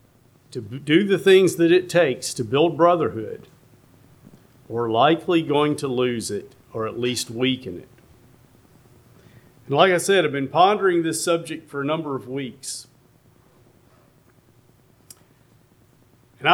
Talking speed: 130 wpm